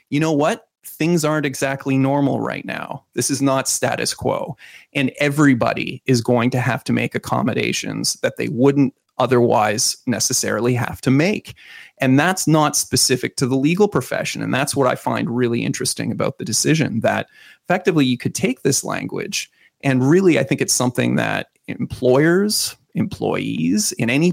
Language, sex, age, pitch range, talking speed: English, male, 30-49, 125-155 Hz, 165 wpm